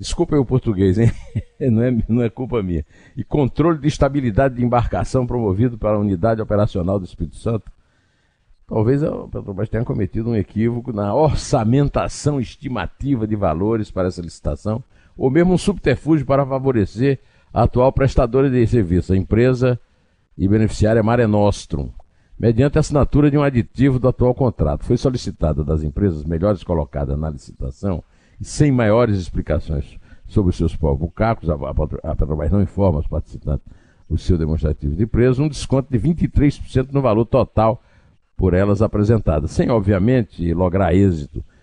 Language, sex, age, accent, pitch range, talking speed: Portuguese, male, 60-79, Brazilian, 90-125 Hz, 155 wpm